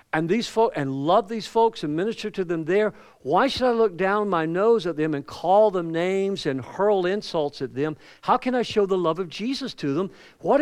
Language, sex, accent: English, male, American